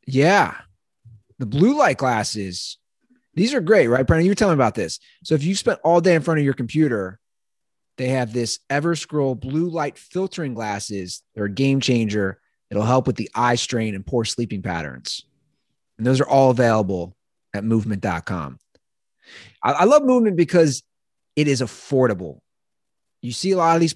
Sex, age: male, 30-49